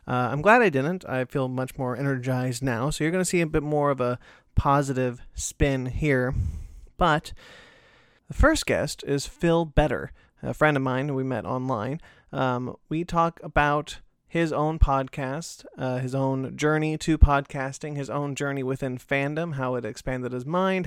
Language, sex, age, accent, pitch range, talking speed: English, male, 30-49, American, 130-155 Hz, 175 wpm